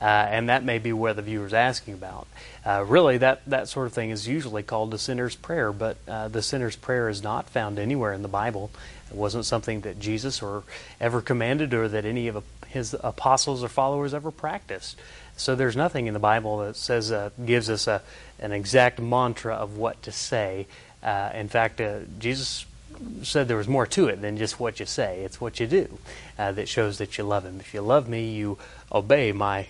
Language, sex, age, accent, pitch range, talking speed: English, male, 30-49, American, 105-130 Hz, 220 wpm